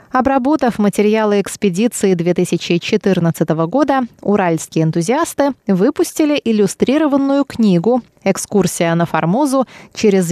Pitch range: 180-245 Hz